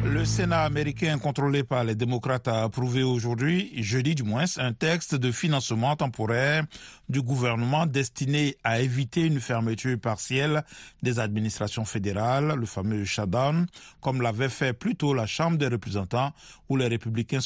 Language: French